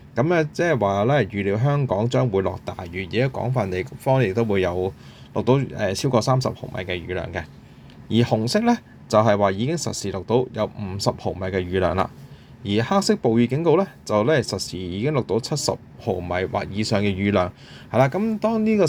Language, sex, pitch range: Chinese, male, 100-130 Hz